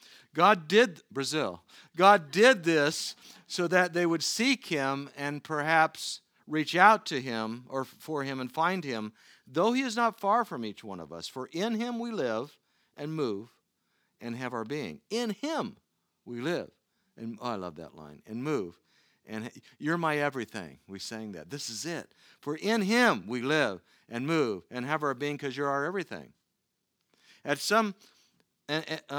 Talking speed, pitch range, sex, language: 175 wpm, 130-180 Hz, male, English